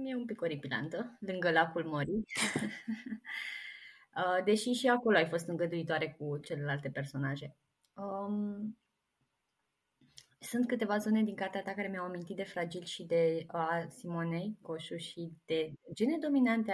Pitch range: 155-195 Hz